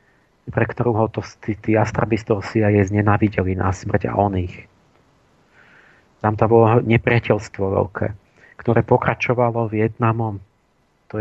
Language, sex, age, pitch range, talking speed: Slovak, male, 40-59, 105-115 Hz, 110 wpm